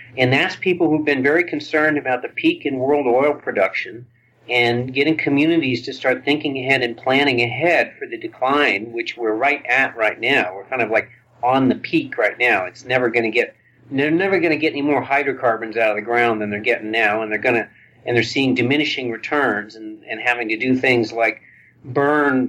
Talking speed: 215 wpm